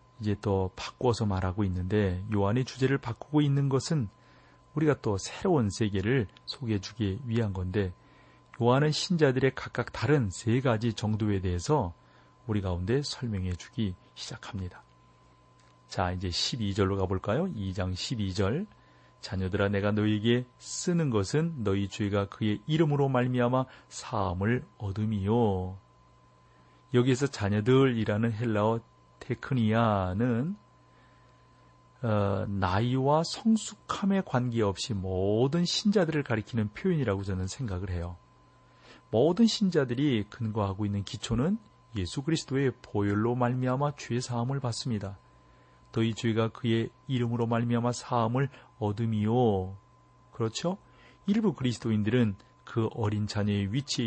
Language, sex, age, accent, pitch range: Korean, male, 40-59, native, 95-125 Hz